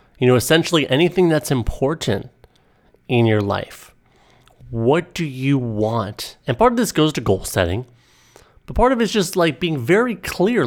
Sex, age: male, 30-49